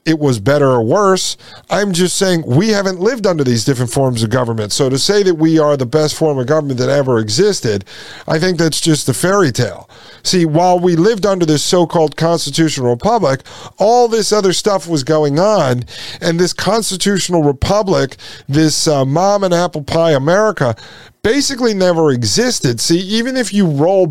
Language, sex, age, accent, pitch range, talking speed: English, male, 50-69, American, 140-185 Hz, 185 wpm